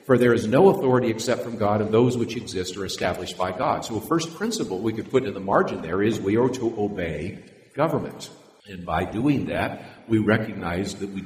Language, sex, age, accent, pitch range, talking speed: English, male, 50-69, American, 100-125 Hz, 220 wpm